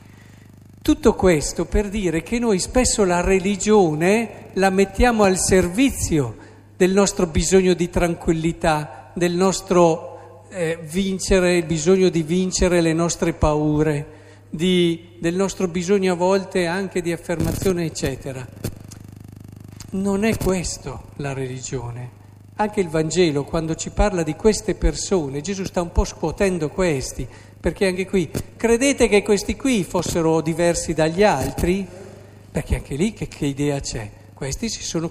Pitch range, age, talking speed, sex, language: 130-190 Hz, 50-69, 135 wpm, male, Italian